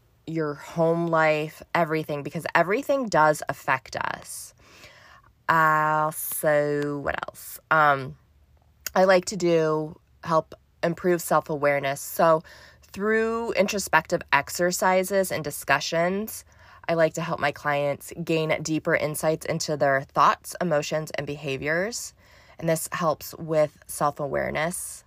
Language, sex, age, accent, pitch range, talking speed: English, female, 20-39, American, 145-165 Hz, 110 wpm